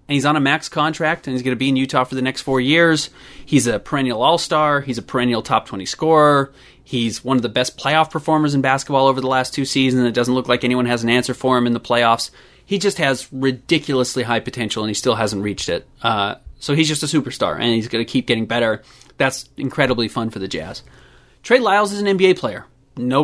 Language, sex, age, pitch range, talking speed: English, male, 30-49, 125-150 Hz, 240 wpm